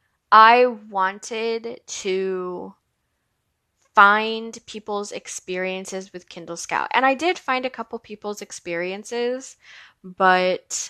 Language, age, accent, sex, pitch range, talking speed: English, 10-29, American, female, 175-215 Hz, 100 wpm